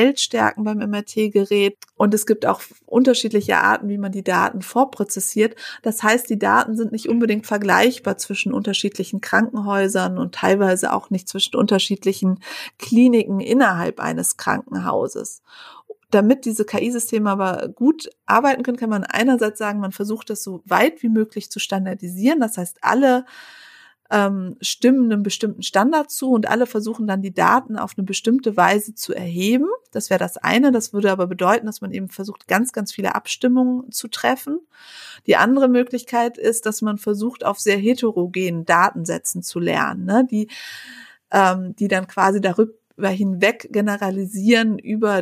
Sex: female